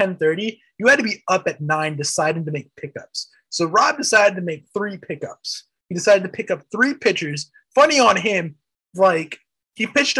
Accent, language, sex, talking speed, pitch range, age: American, English, male, 190 wpm, 155-215 Hz, 20-39